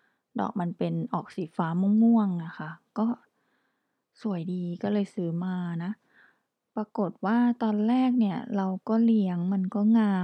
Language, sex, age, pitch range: Thai, female, 20-39, 180-225 Hz